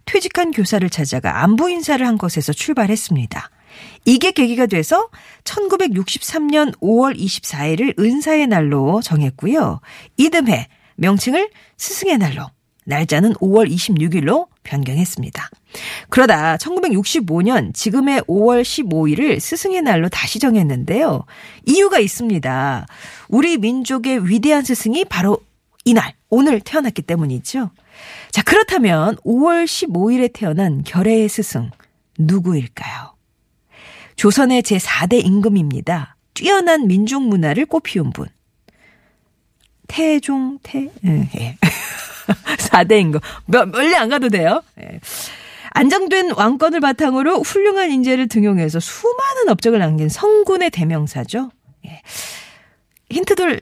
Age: 40-59